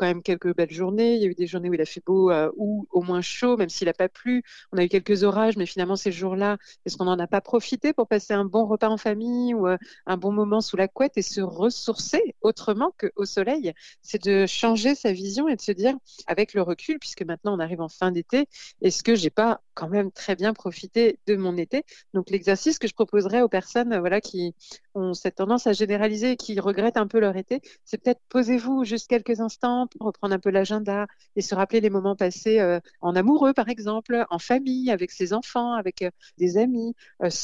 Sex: female